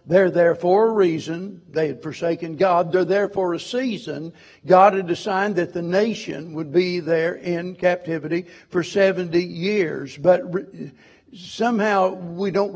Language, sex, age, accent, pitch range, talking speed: English, male, 60-79, American, 165-190 Hz, 150 wpm